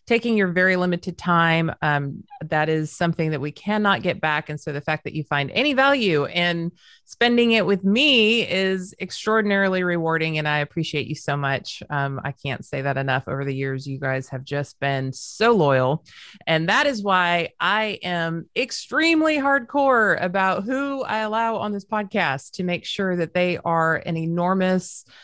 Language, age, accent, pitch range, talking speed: English, 30-49, American, 160-225 Hz, 180 wpm